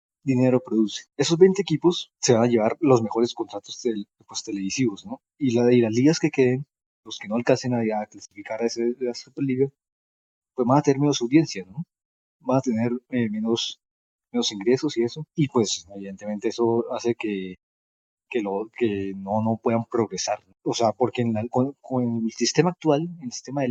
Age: 20-39